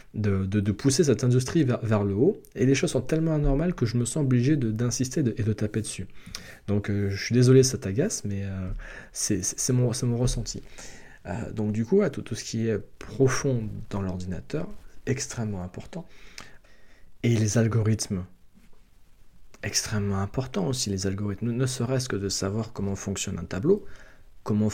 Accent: French